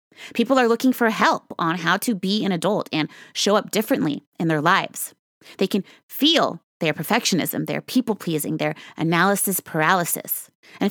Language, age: English, 30-49